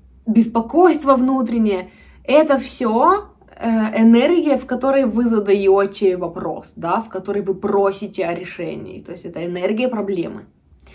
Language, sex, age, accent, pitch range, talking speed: Russian, female, 20-39, native, 195-260 Hz, 130 wpm